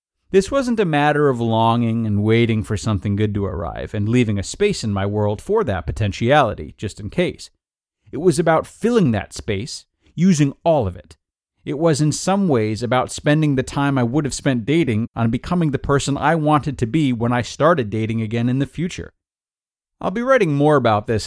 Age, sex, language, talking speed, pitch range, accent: 30-49, male, English, 205 wpm, 105-150 Hz, American